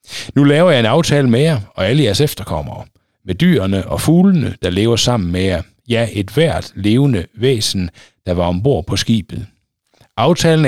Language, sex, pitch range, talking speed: Danish, male, 95-135 Hz, 175 wpm